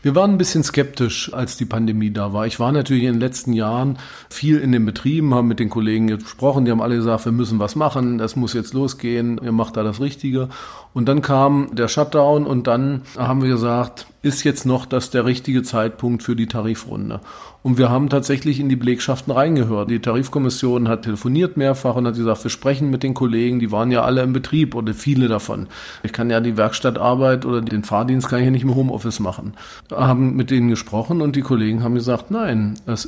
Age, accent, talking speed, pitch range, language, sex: 40-59, German, 215 wpm, 115-135 Hz, German, male